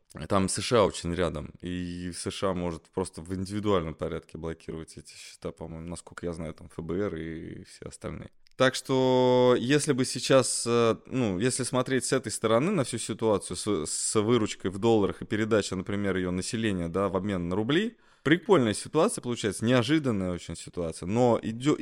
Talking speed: 165 wpm